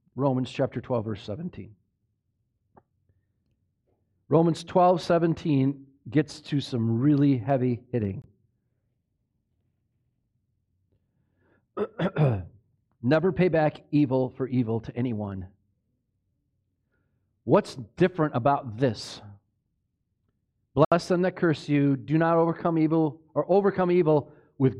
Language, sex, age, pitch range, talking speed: English, male, 40-59, 105-150 Hz, 95 wpm